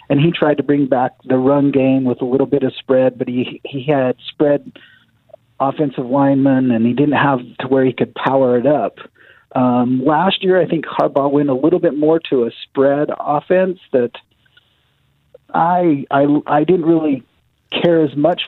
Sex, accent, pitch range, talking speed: male, American, 125-150 Hz, 185 wpm